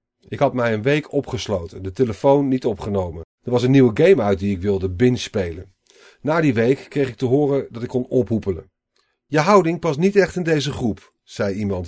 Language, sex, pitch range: Dutch, male, 105-140 Hz